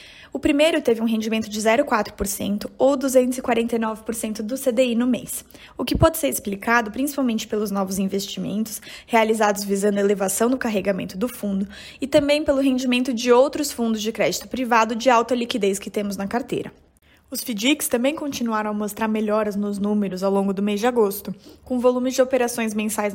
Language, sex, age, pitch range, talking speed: Portuguese, female, 20-39, 215-260 Hz, 175 wpm